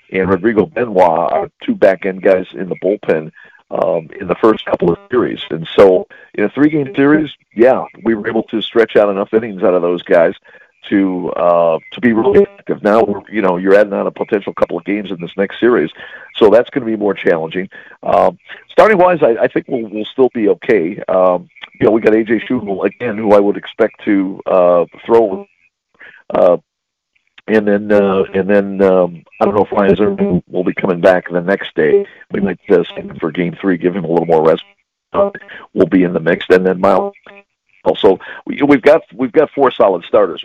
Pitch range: 95-130 Hz